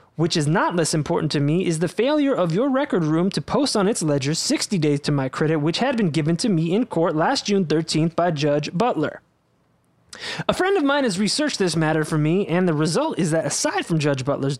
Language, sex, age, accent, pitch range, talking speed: English, male, 20-39, American, 155-210 Hz, 235 wpm